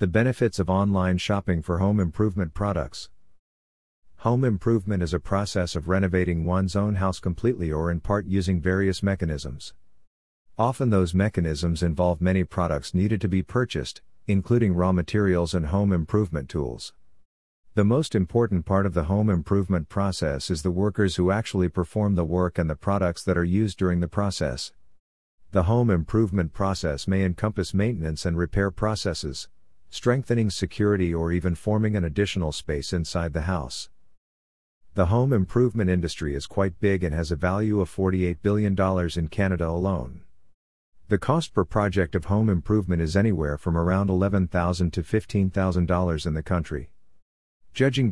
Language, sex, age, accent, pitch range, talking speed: English, male, 50-69, American, 85-100 Hz, 155 wpm